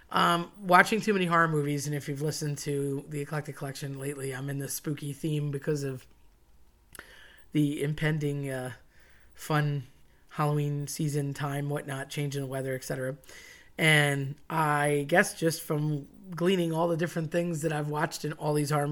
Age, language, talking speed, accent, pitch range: 30-49, English, 165 wpm, American, 145-170 Hz